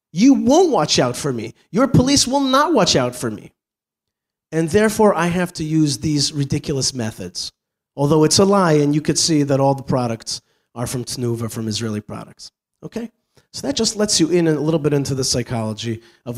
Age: 30-49